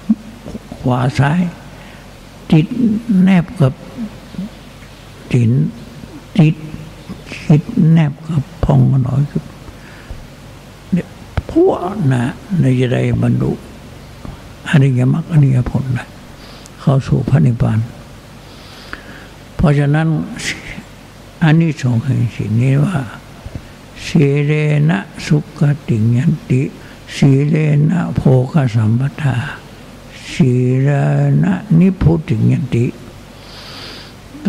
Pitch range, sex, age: 125-160 Hz, male, 60-79